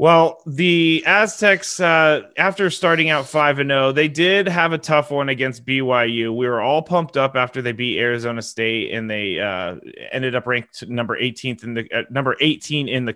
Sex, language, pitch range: male, English, 115-155 Hz